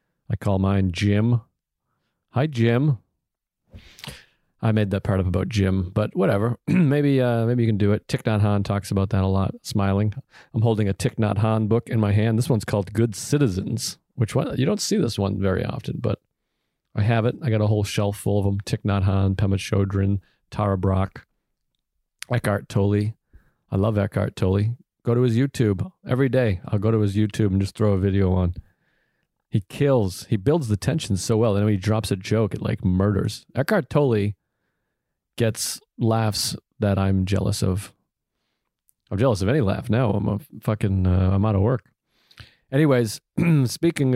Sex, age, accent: male, 40-59, American